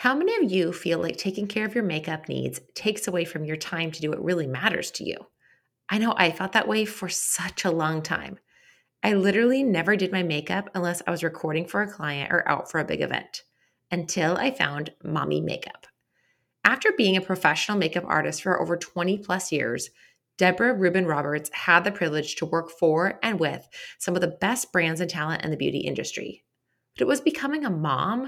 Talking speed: 210 wpm